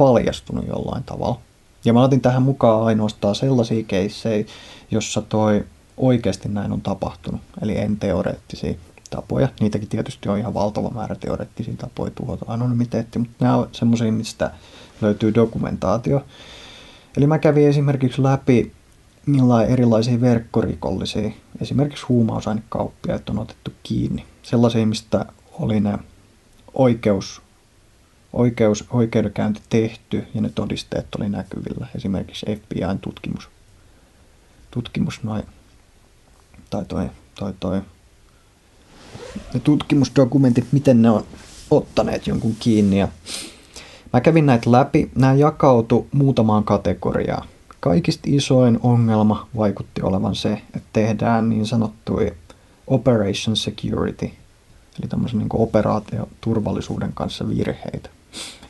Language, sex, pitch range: Finnish, male, 105-125 Hz